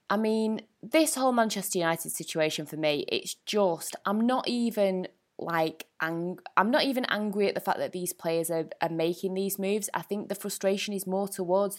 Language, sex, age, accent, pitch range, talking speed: English, female, 20-39, British, 185-240 Hz, 195 wpm